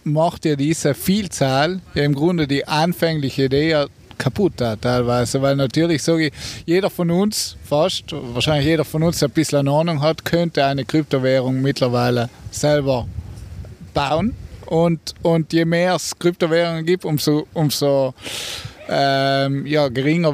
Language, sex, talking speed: German, male, 150 wpm